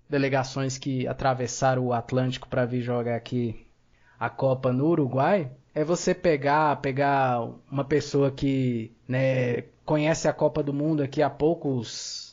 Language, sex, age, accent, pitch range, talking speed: Portuguese, male, 20-39, Brazilian, 135-170 Hz, 140 wpm